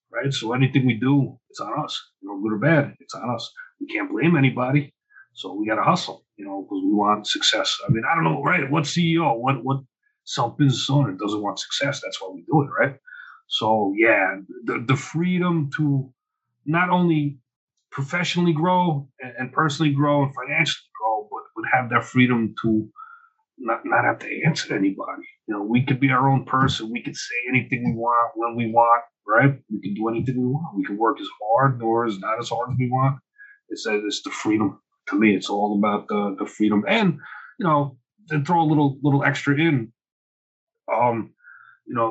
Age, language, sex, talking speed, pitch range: 40-59, English, male, 200 wpm, 120-180 Hz